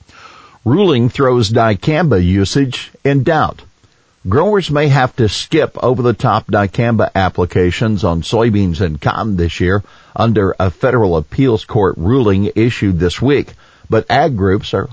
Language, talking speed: English, 135 wpm